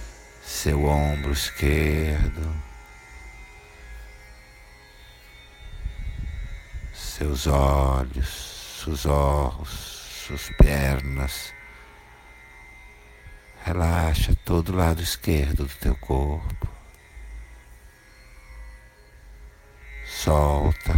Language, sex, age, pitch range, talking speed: Portuguese, male, 60-79, 70-85 Hz, 50 wpm